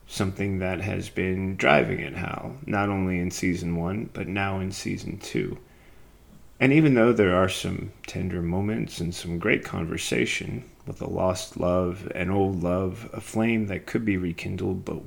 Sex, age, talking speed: male, 30-49, 170 wpm